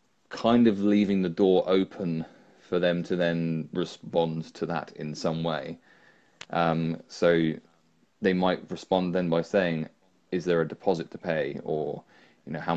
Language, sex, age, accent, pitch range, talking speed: English, male, 20-39, British, 80-90 Hz, 160 wpm